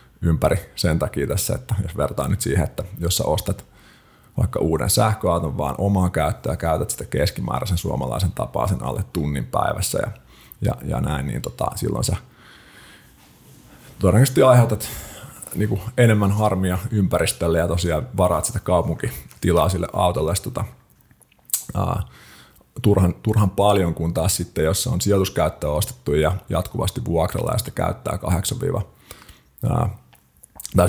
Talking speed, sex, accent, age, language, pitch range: 135 wpm, male, native, 30-49, Finnish, 80-105 Hz